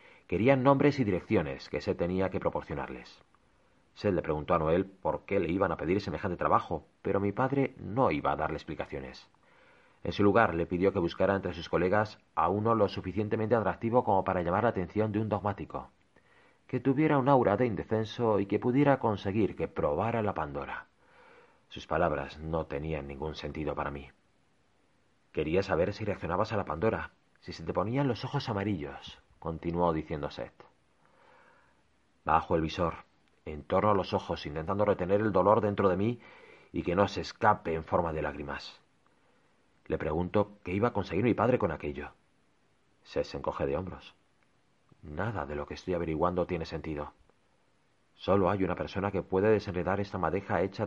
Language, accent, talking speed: Spanish, Spanish, 175 wpm